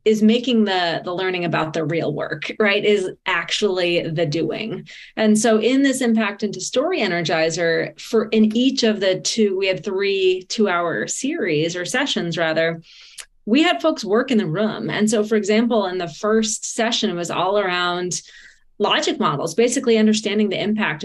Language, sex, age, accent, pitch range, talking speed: English, female, 30-49, American, 185-225 Hz, 175 wpm